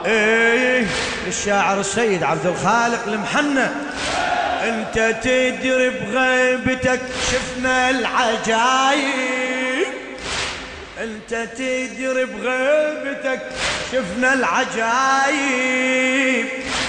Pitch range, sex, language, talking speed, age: 225-260 Hz, male, Arabic, 55 wpm, 30-49